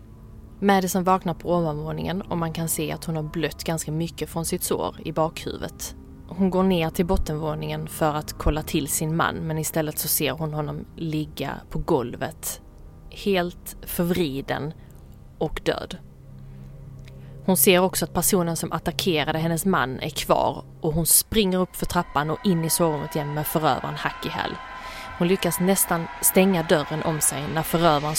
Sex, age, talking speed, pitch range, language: female, 20-39, 165 wpm, 150-175 Hz, Swedish